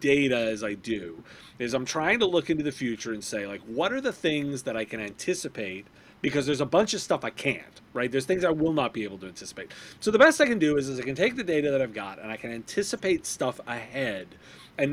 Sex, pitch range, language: male, 130-185 Hz, English